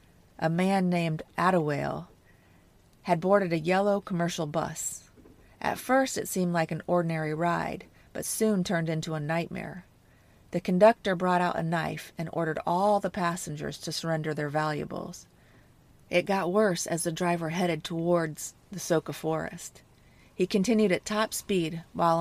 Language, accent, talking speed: English, American, 150 wpm